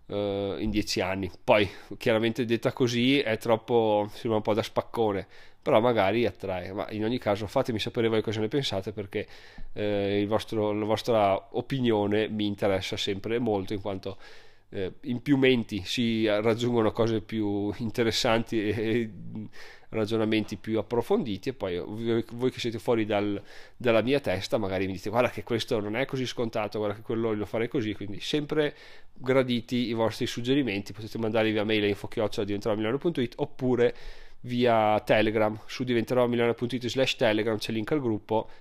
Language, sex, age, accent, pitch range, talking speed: Italian, male, 30-49, native, 105-125 Hz, 165 wpm